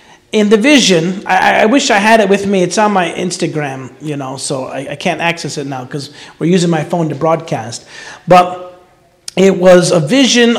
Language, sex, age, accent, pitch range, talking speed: English, male, 40-59, American, 170-210 Hz, 205 wpm